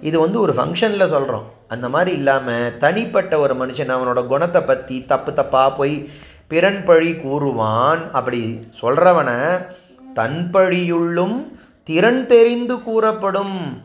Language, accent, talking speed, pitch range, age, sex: Tamil, native, 115 wpm, 135-185 Hz, 30-49, male